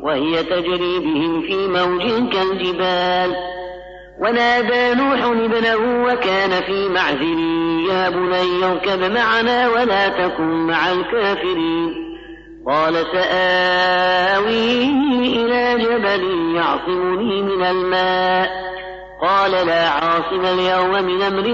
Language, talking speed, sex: Arabic, 90 wpm, female